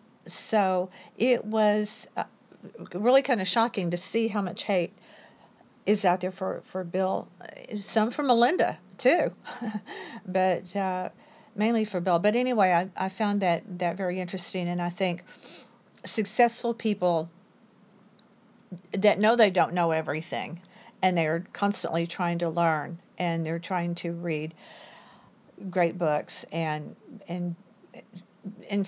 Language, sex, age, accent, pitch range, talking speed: English, female, 50-69, American, 175-215 Hz, 130 wpm